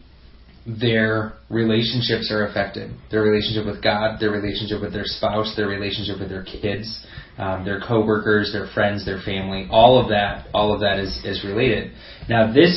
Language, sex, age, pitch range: English, male, 20-39, 100-115 Hz